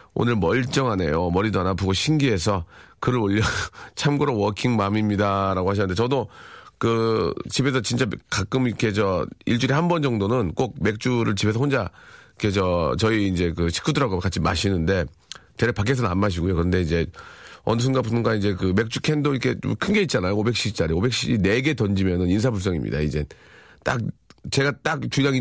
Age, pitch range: 40-59, 95-140 Hz